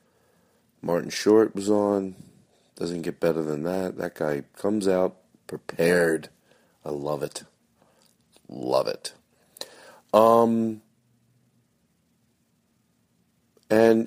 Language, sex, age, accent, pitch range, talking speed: English, male, 40-59, American, 85-135 Hz, 90 wpm